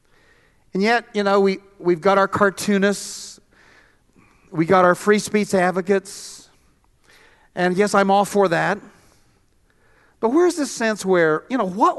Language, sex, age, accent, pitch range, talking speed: English, male, 50-69, American, 165-220 Hz, 145 wpm